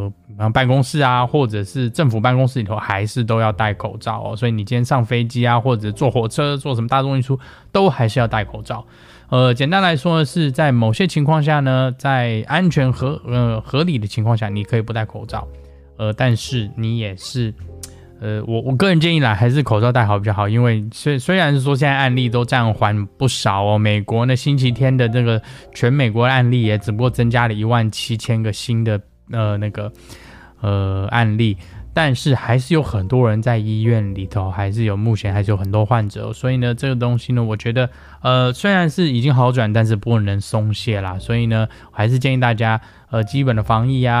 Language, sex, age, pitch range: Chinese, male, 10-29, 105-125 Hz